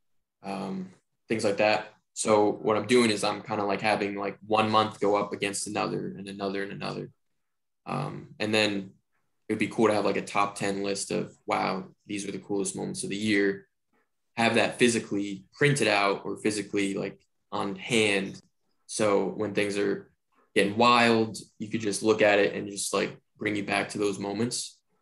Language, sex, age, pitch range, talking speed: English, male, 10-29, 100-115 Hz, 190 wpm